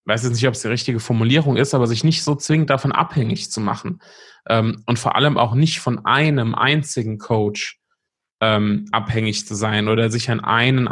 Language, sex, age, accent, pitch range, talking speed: German, male, 20-39, German, 115-130 Hz, 200 wpm